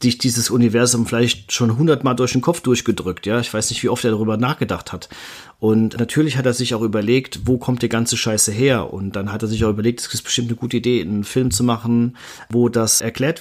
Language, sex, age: German, male, 40-59